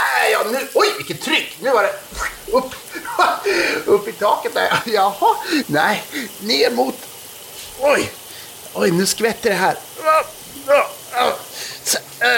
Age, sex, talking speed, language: 30-49, male, 115 wpm, Swedish